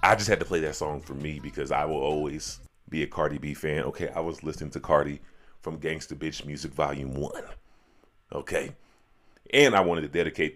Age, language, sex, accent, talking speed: 30-49, English, male, American, 205 wpm